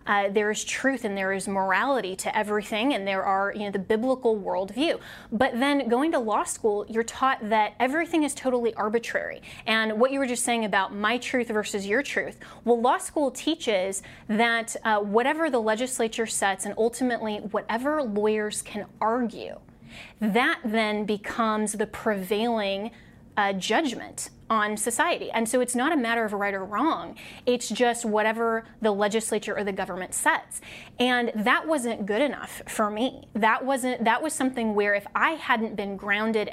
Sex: female